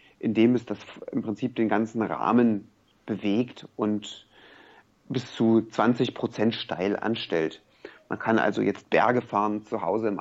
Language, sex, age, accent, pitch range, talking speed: German, male, 30-49, German, 110-125 Hz, 145 wpm